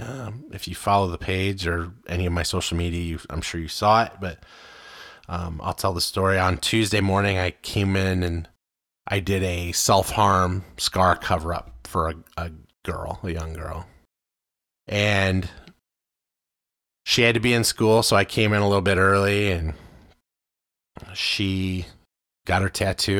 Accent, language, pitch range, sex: American, English, 85-100 Hz, male